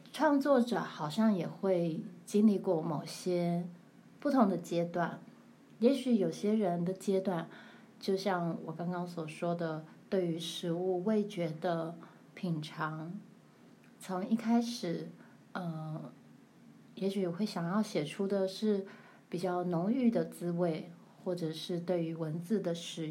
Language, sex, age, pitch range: Chinese, female, 20-39, 170-210 Hz